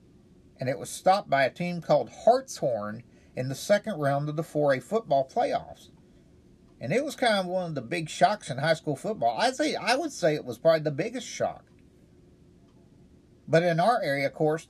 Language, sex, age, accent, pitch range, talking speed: English, male, 50-69, American, 140-185 Hz, 200 wpm